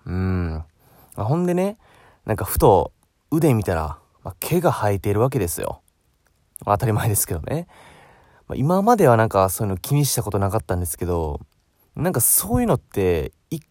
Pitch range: 95-145 Hz